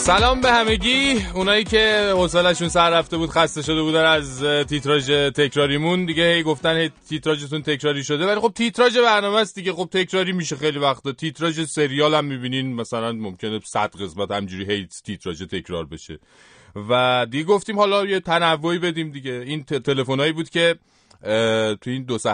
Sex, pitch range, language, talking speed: male, 95-155 Hz, Persian, 170 wpm